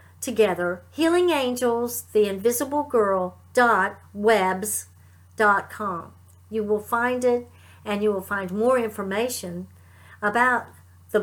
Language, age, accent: English, 50-69, American